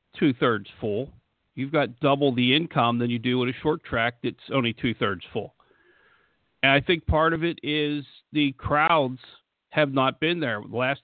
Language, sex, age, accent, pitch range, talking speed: English, male, 50-69, American, 125-150 Hz, 180 wpm